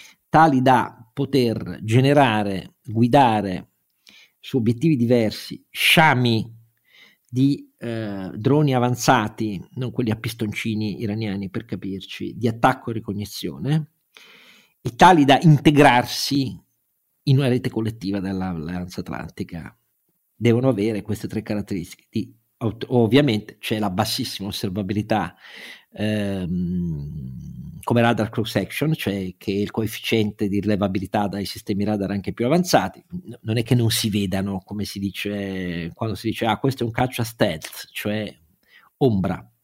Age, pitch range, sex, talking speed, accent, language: 50-69, 100-125 Hz, male, 125 wpm, native, Italian